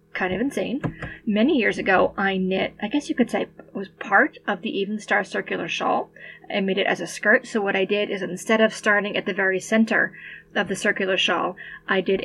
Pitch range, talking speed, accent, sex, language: 190-220 Hz, 215 wpm, American, female, English